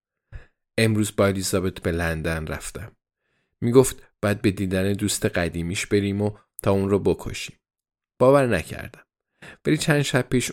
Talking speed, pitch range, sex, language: 135 wpm, 90-115 Hz, male, Persian